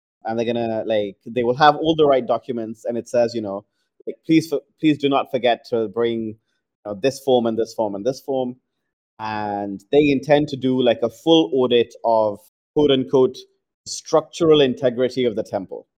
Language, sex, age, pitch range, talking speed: English, male, 30-49, 110-145 Hz, 195 wpm